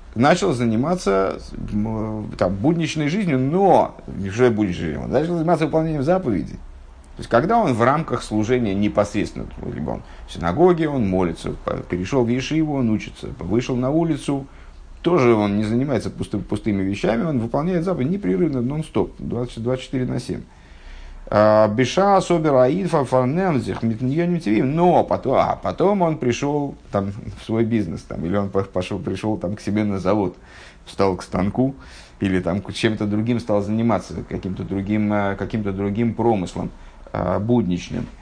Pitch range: 100-140 Hz